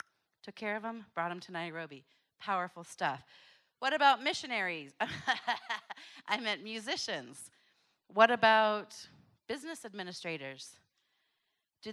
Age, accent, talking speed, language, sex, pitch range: 30-49, American, 105 wpm, English, female, 185-250 Hz